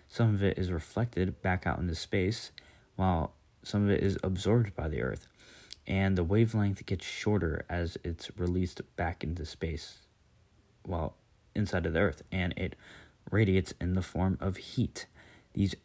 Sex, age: male, 30-49